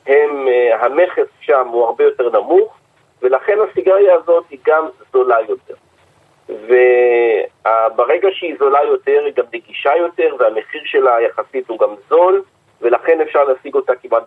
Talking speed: 135 wpm